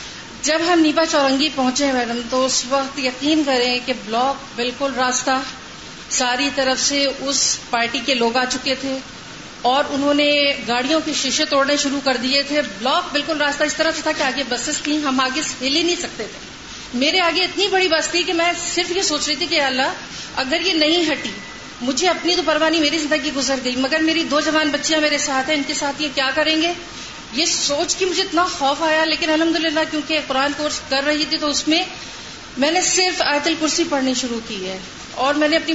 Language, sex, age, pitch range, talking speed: Urdu, female, 40-59, 265-320 Hz, 215 wpm